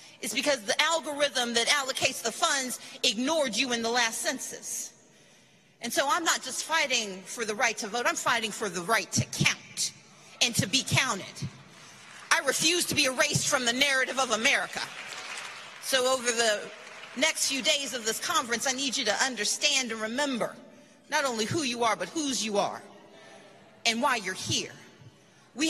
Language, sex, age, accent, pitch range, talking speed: English, female, 40-59, American, 225-290 Hz, 175 wpm